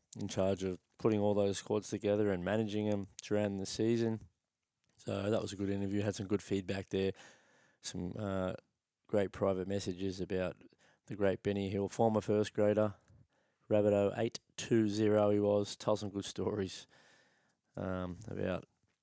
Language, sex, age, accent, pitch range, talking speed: English, male, 20-39, Australian, 95-110 Hz, 160 wpm